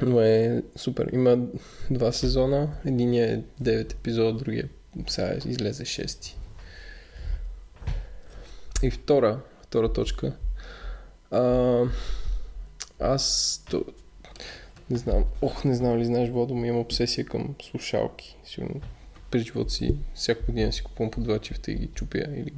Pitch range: 115-130 Hz